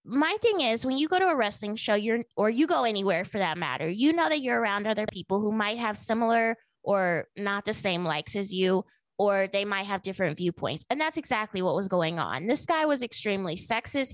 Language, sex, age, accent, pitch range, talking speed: English, female, 20-39, American, 195-245 Hz, 225 wpm